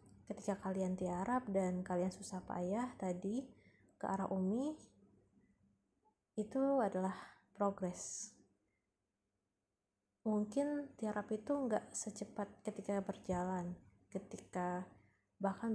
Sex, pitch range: female, 185-210 Hz